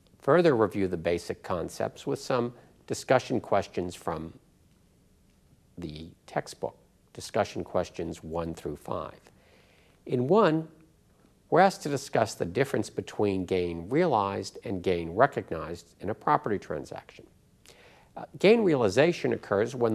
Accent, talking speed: American, 120 wpm